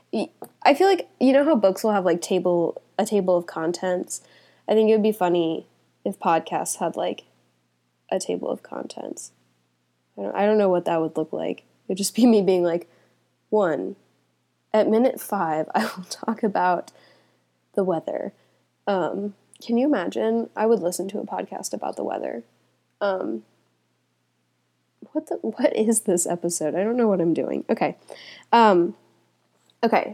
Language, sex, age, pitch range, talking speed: English, female, 10-29, 170-225 Hz, 165 wpm